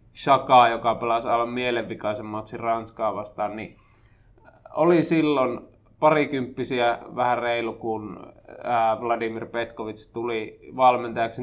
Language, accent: Finnish, native